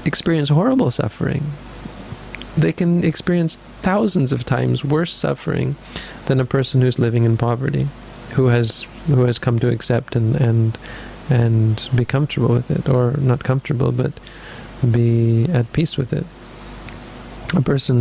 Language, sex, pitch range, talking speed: English, male, 120-140 Hz, 145 wpm